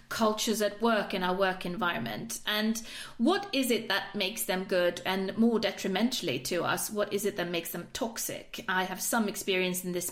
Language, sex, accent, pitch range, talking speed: English, female, British, 185-230 Hz, 195 wpm